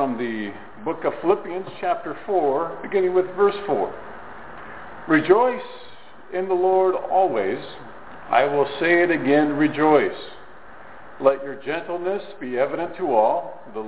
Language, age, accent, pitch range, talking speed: English, 50-69, American, 130-185 Hz, 130 wpm